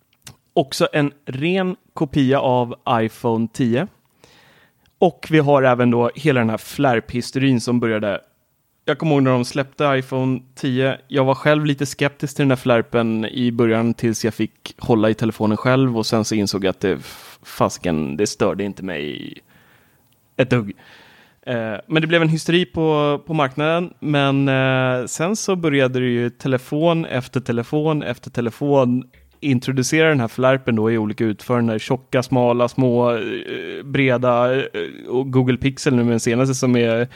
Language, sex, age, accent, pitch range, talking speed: Swedish, male, 30-49, native, 120-145 Hz, 155 wpm